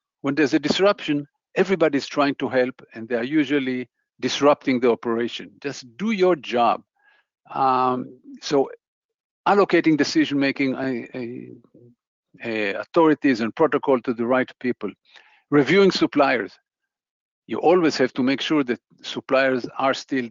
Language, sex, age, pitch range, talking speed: English, male, 50-69, 125-180 Hz, 125 wpm